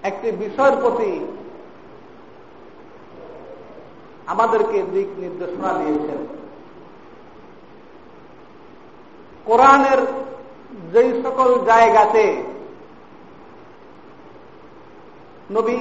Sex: male